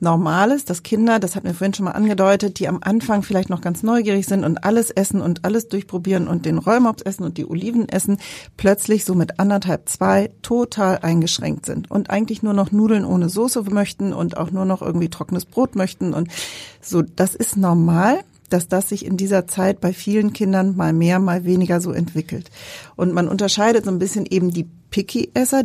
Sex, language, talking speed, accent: female, German, 200 wpm, German